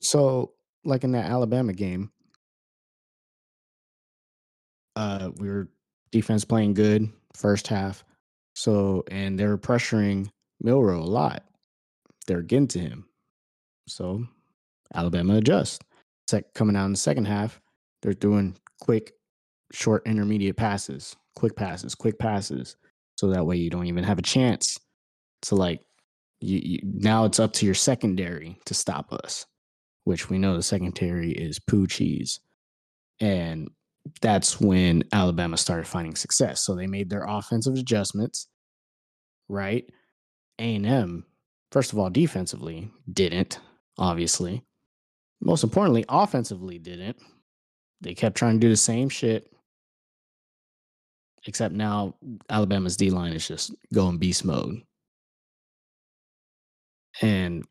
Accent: American